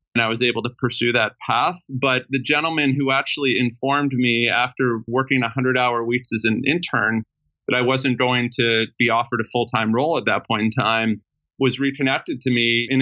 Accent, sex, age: American, male, 30-49